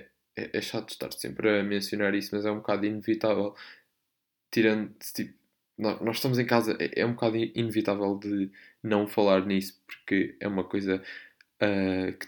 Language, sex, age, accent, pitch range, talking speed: Portuguese, male, 20-39, Brazilian, 105-145 Hz, 160 wpm